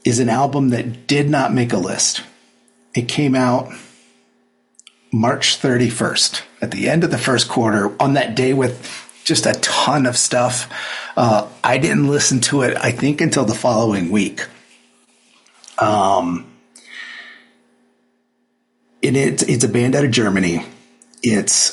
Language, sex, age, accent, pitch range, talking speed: English, male, 50-69, American, 80-130 Hz, 145 wpm